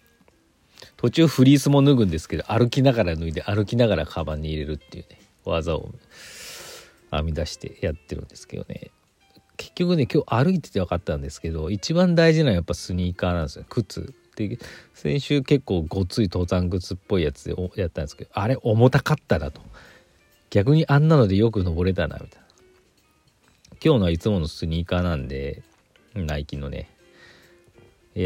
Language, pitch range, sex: Japanese, 85-115 Hz, male